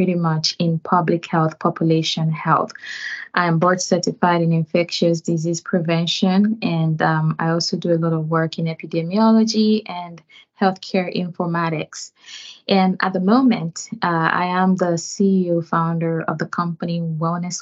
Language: English